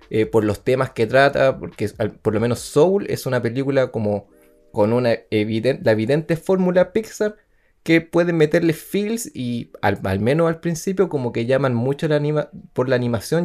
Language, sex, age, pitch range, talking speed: Spanish, male, 20-39, 120-185 Hz, 165 wpm